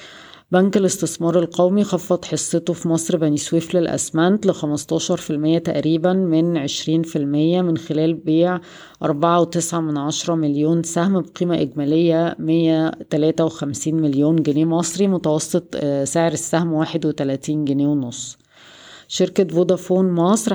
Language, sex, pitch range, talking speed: Arabic, female, 150-175 Hz, 135 wpm